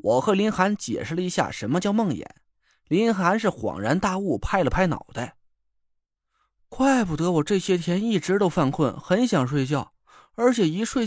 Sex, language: male, Chinese